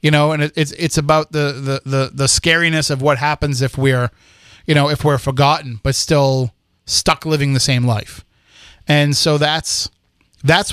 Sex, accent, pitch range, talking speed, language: male, American, 130-155 Hz, 180 wpm, English